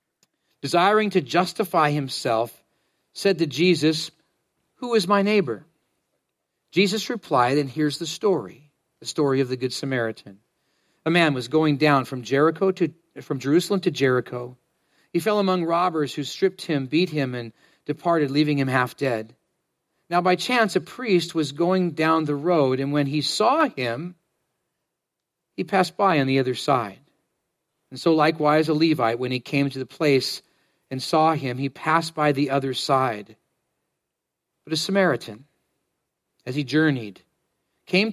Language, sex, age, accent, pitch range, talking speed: English, male, 40-59, American, 130-175 Hz, 155 wpm